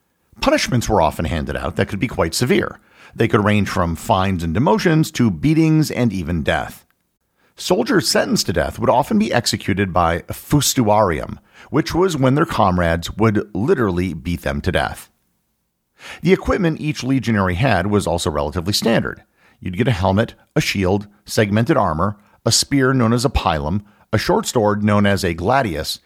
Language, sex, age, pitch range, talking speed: English, male, 50-69, 85-130 Hz, 170 wpm